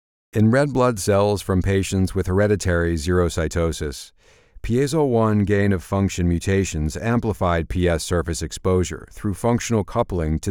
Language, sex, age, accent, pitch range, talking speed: English, male, 50-69, American, 85-110 Hz, 115 wpm